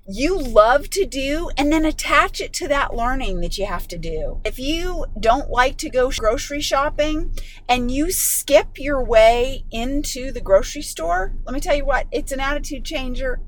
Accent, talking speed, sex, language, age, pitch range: American, 185 wpm, female, English, 30-49, 235-320 Hz